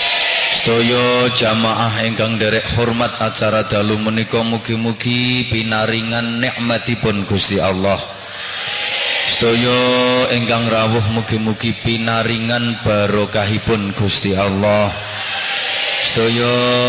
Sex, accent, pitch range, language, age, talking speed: male, Indonesian, 110-120 Hz, English, 20-39, 90 wpm